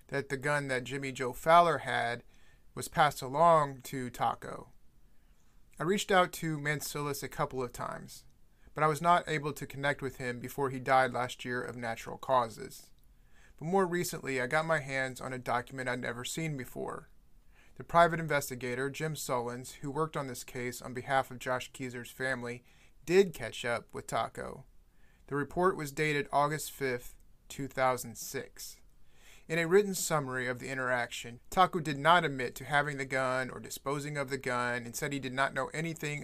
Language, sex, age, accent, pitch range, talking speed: English, male, 30-49, American, 125-155 Hz, 180 wpm